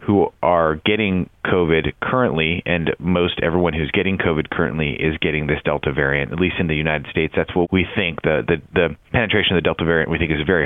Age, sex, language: 30-49, male, English